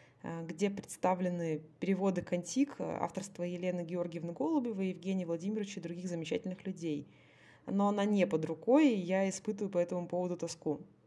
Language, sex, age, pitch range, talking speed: Russian, female, 20-39, 170-200 Hz, 140 wpm